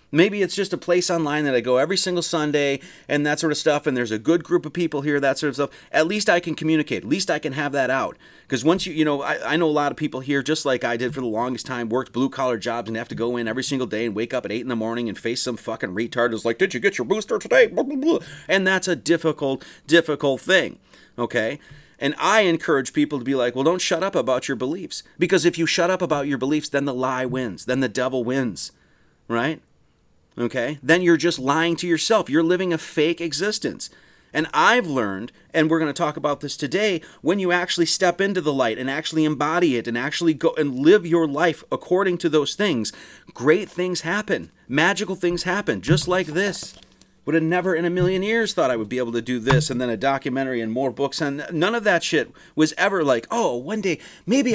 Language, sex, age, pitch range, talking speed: English, male, 30-49, 130-175 Hz, 240 wpm